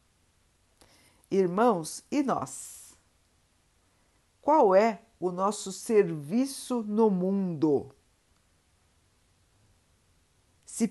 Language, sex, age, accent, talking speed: Portuguese, female, 50-69, Brazilian, 60 wpm